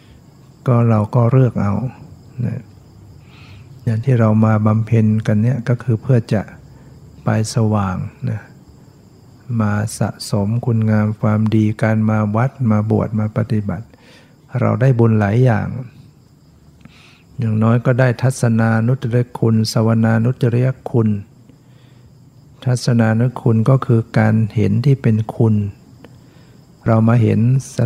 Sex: male